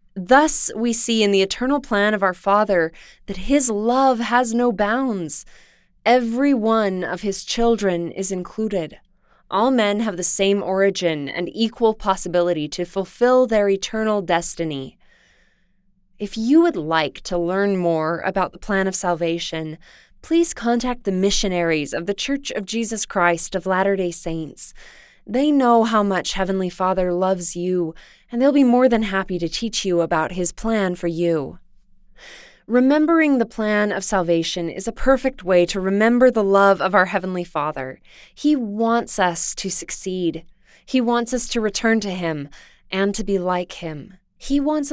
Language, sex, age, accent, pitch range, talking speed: English, female, 20-39, American, 180-230 Hz, 160 wpm